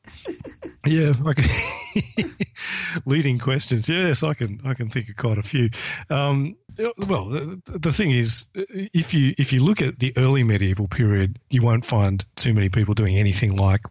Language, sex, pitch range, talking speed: English, male, 105-135 Hz, 165 wpm